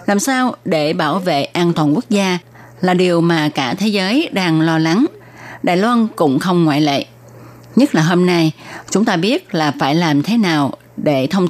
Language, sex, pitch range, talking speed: Vietnamese, female, 150-200 Hz, 200 wpm